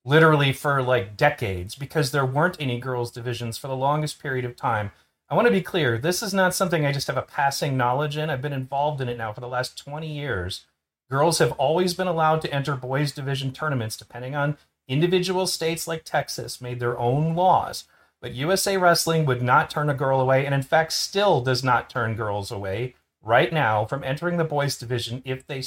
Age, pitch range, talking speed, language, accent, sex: 30-49, 125-160 Hz, 210 wpm, English, American, male